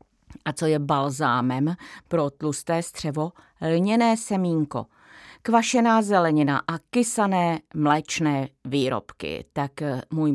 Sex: female